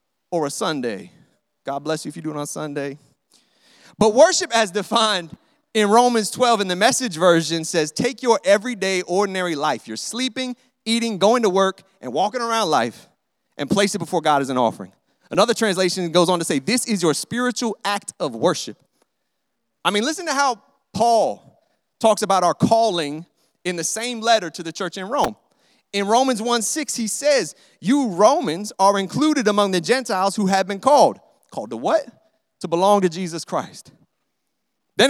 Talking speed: 180 wpm